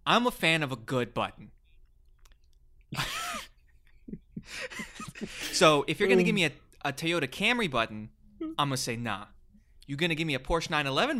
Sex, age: male, 20-39